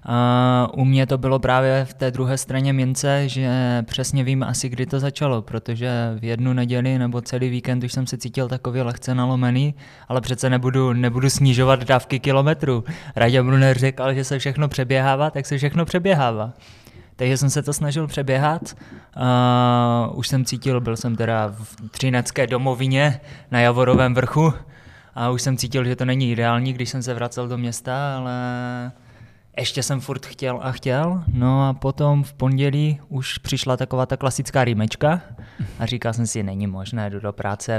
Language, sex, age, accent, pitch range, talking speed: Czech, male, 20-39, native, 120-135 Hz, 175 wpm